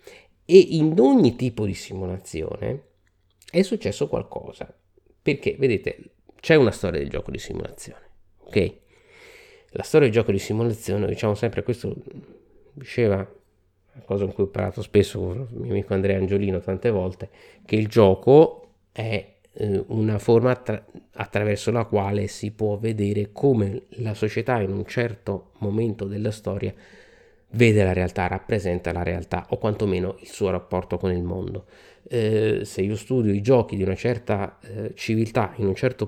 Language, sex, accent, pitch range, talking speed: Italian, male, native, 95-120 Hz, 155 wpm